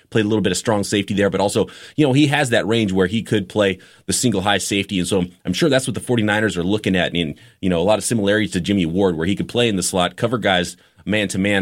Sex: male